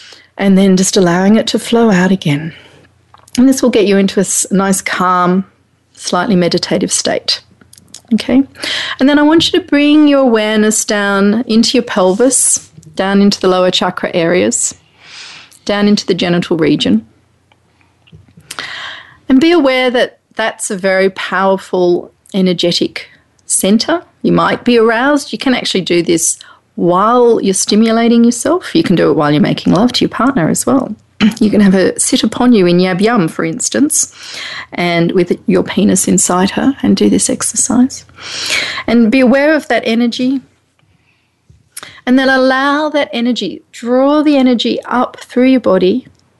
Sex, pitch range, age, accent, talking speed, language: female, 185-255 Hz, 40-59, Australian, 155 wpm, English